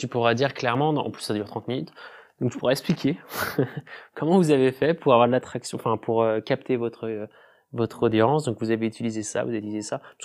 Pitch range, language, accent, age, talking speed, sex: 120-145 Hz, French, French, 20-39, 230 wpm, male